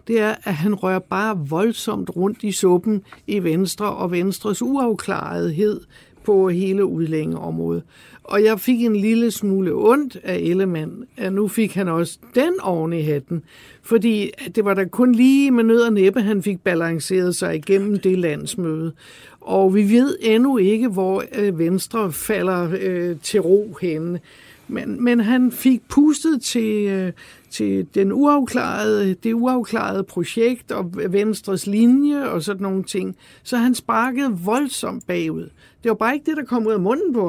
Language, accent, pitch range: Danish, native, 185-230 Hz